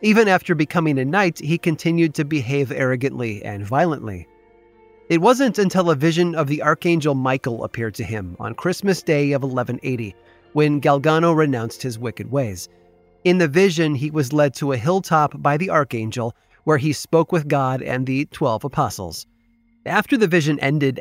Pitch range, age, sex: 125-170 Hz, 30-49, male